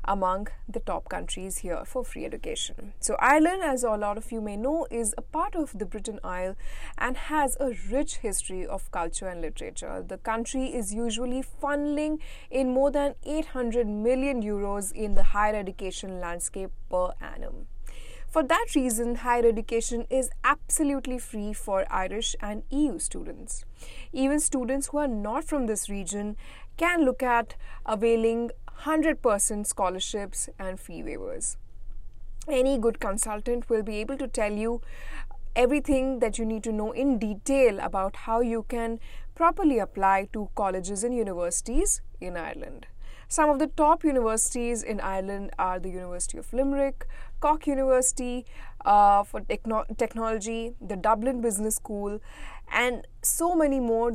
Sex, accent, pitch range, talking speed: female, Indian, 205-265 Hz, 150 wpm